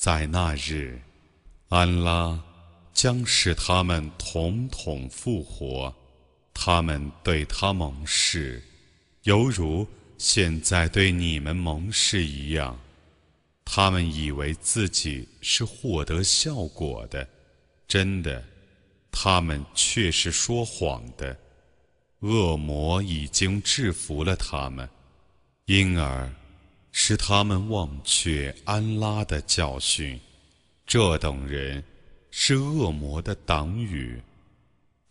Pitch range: 75-95 Hz